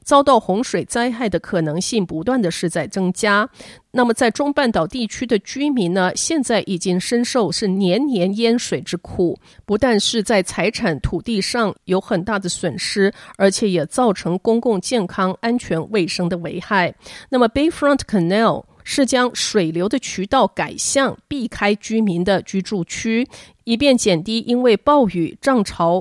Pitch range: 180-240 Hz